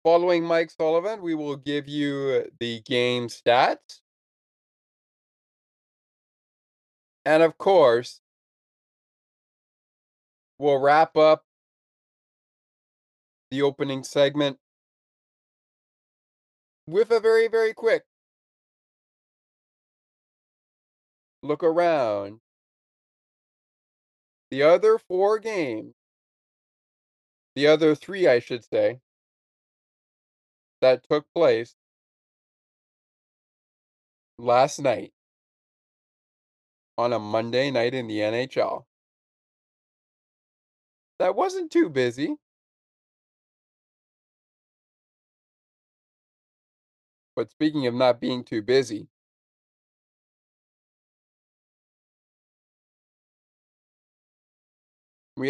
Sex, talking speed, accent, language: male, 65 wpm, American, English